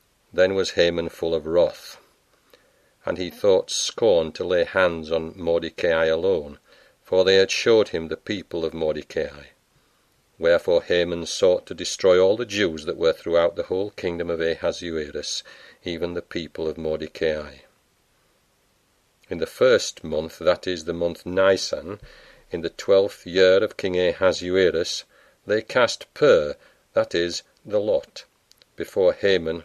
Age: 50-69